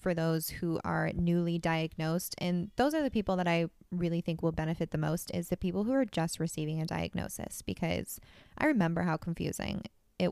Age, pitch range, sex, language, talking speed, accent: 20-39, 165-185 Hz, female, English, 200 wpm, American